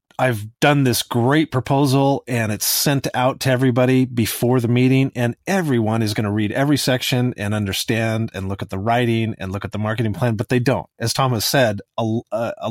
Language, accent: English, American